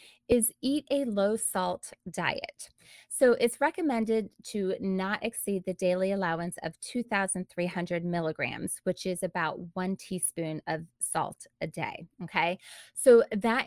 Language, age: English, 20-39